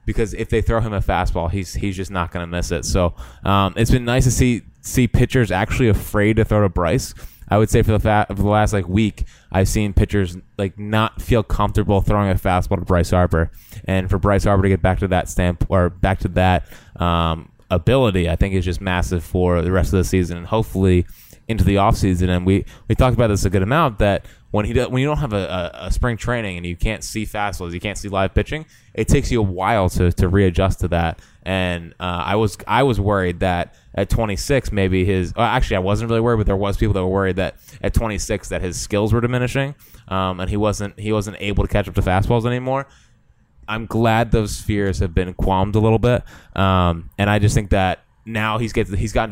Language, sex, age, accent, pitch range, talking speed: English, male, 20-39, American, 95-110 Hz, 240 wpm